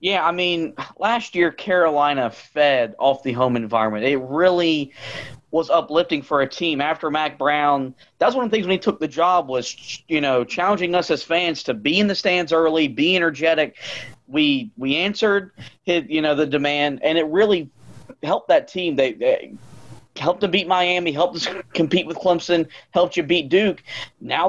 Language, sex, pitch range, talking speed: English, male, 140-175 Hz, 185 wpm